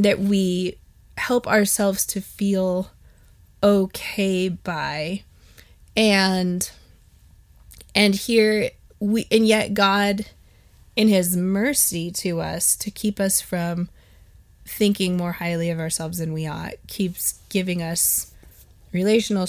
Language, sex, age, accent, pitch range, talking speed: English, female, 20-39, American, 170-210 Hz, 110 wpm